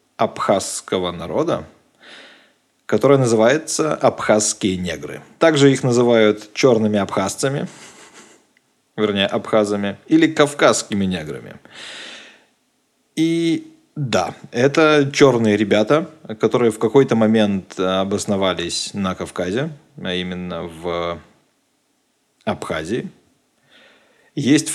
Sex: male